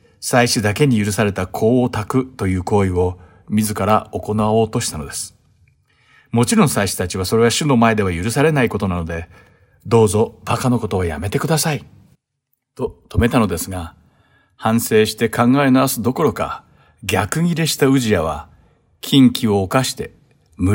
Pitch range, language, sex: 100-125 Hz, Japanese, male